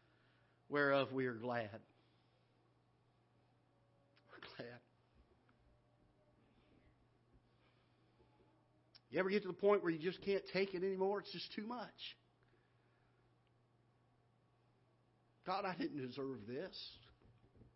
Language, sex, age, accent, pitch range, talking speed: English, male, 60-79, American, 125-175 Hz, 95 wpm